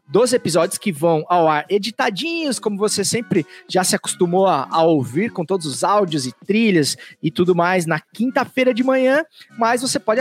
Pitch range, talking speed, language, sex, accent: 180-255 Hz, 190 wpm, Portuguese, male, Brazilian